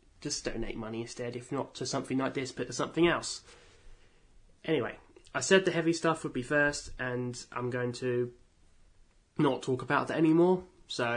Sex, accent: male, British